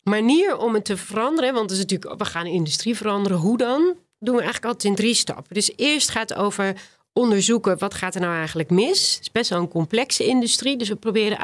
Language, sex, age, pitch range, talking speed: Dutch, female, 40-59, 175-240 Hz, 245 wpm